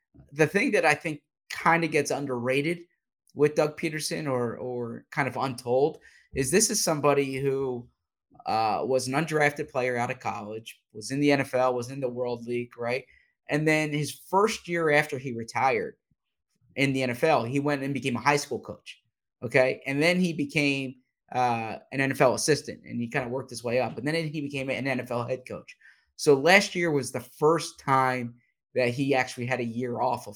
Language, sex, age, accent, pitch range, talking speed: English, male, 20-39, American, 125-150 Hz, 195 wpm